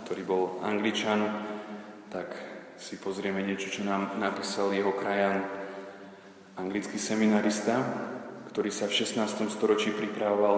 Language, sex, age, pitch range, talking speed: Slovak, male, 20-39, 100-105 Hz, 115 wpm